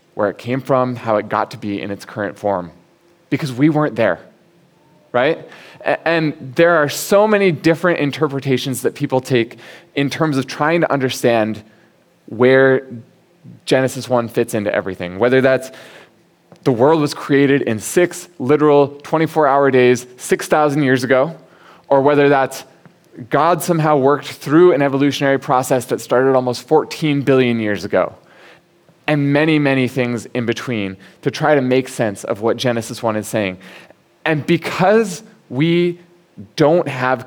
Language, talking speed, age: English, 150 wpm, 20-39